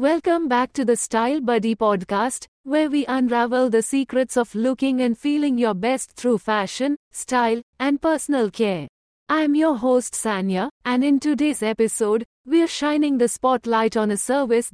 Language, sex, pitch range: English, female, 225-280 Hz